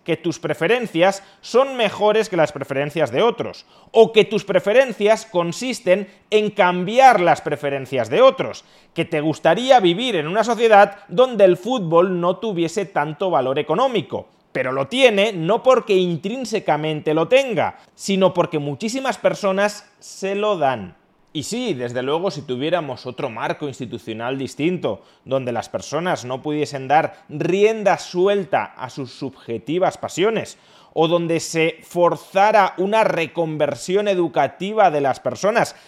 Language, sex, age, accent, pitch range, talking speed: Spanish, male, 30-49, Spanish, 145-200 Hz, 140 wpm